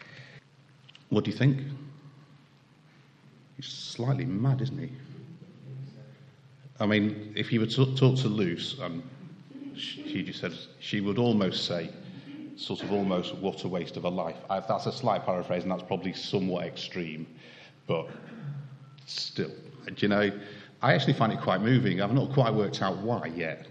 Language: English